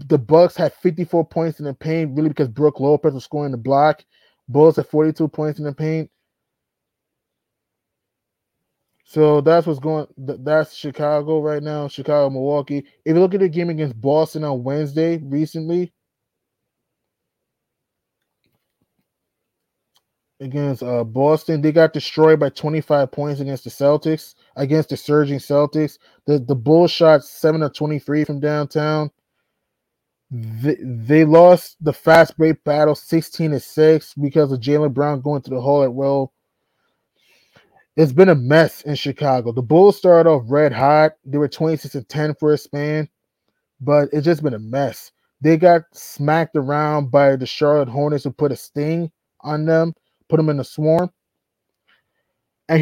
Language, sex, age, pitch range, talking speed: English, male, 20-39, 145-160 Hz, 150 wpm